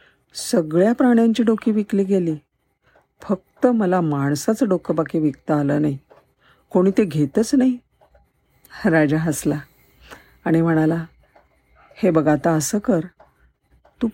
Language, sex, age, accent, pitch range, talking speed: Marathi, female, 50-69, native, 155-210 Hz, 115 wpm